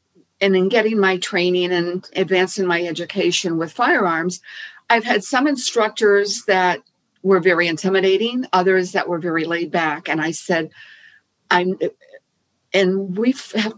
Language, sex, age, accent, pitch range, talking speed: English, female, 50-69, American, 170-205 Hz, 135 wpm